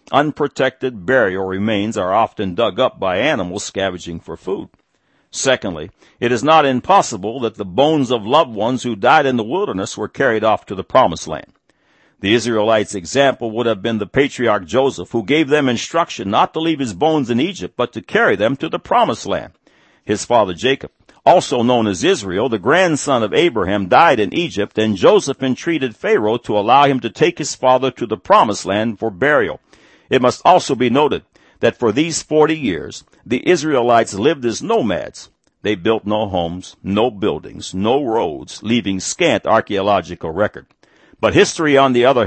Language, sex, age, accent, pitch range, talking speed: English, male, 60-79, American, 110-145 Hz, 180 wpm